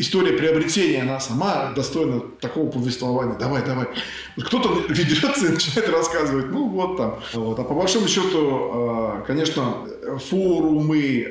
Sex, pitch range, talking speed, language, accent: male, 120-150 Hz, 125 wpm, Russian, native